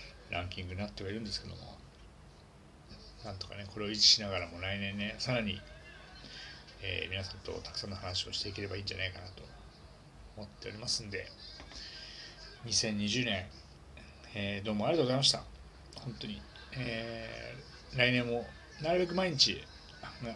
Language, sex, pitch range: Japanese, male, 80-115 Hz